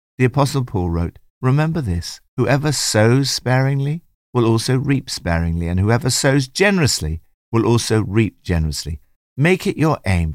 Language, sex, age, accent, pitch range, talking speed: English, male, 60-79, British, 85-135 Hz, 145 wpm